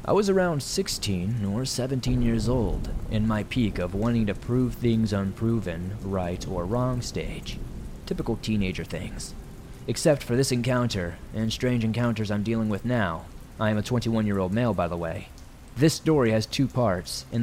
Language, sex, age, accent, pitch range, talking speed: English, male, 20-39, American, 95-125 Hz, 170 wpm